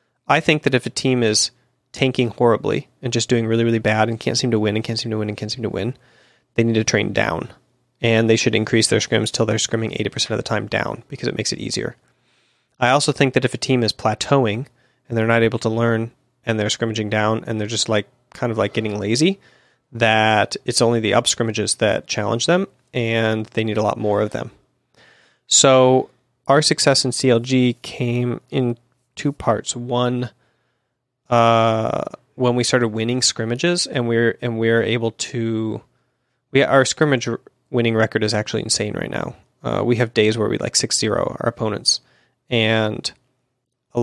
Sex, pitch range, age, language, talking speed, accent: male, 110-125 Hz, 30-49, English, 195 wpm, American